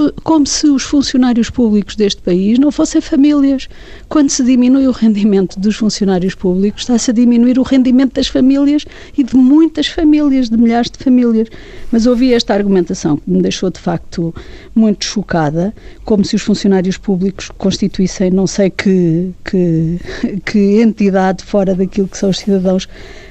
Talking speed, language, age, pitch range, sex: 160 wpm, Portuguese, 50-69, 190-245 Hz, female